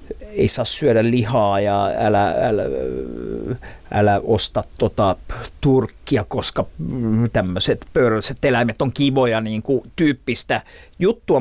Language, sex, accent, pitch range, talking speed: Finnish, male, native, 115-145 Hz, 115 wpm